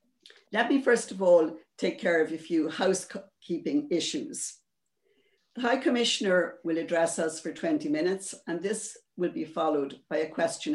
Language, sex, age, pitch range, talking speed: English, female, 60-79, 165-260 Hz, 160 wpm